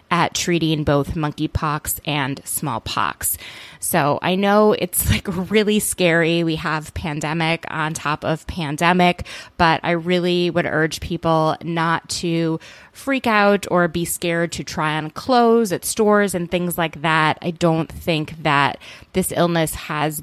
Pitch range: 150-180 Hz